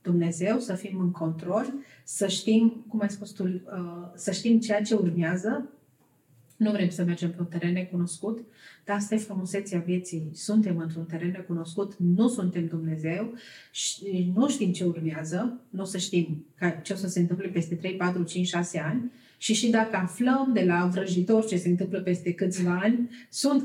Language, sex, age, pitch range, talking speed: Romanian, female, 30-49, 175-220 Hz, 175 wpm